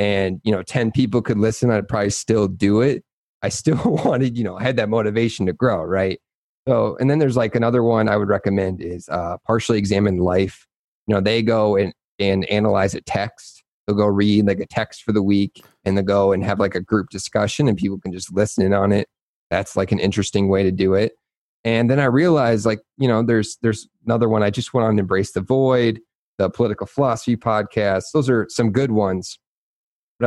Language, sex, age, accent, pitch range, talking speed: English, male, 30-49, American, 100-120 Hz, 220 wpm